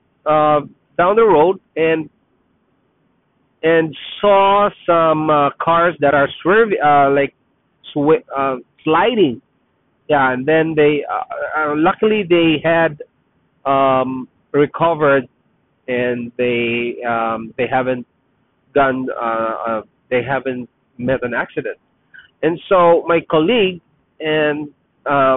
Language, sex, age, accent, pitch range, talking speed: English, male, 30-49, Filipino, 130-165 Hz, 110 wpm